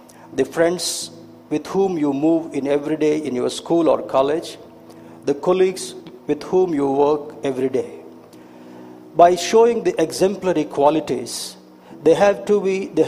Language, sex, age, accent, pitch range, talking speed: Telugu, male, 60-79, native, 135-180 Hz, 145 wpm